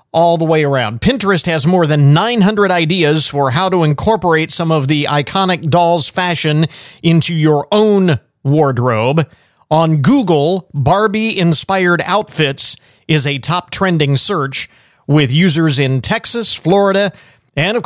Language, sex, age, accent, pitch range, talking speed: English, male, 40-59, American, 140-185 Hz, 130 wpm